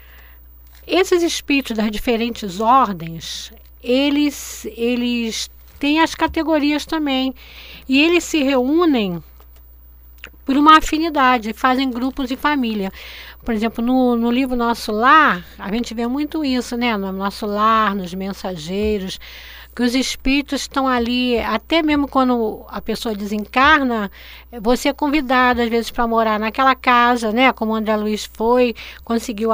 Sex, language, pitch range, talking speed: female, Portuguese, 225-315 Hz, 135 wpm